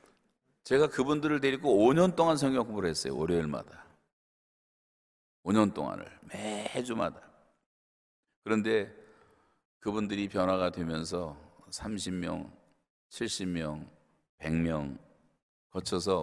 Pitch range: 80-105 Hz